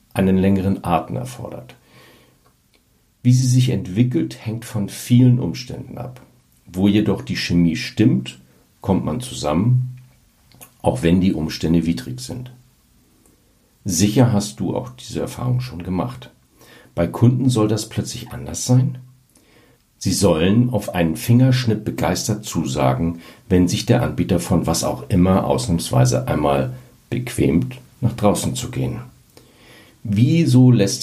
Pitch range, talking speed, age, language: 85-125 Hz, 130 wpm, 60-79, German